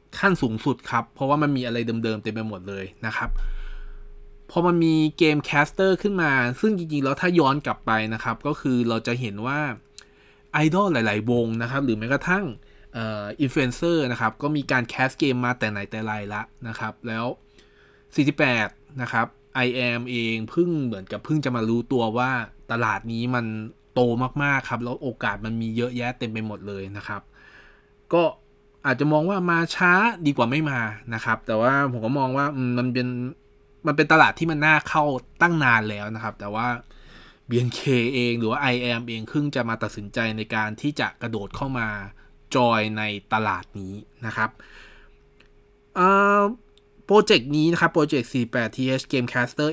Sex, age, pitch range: male, 20-39, 110-145 Hz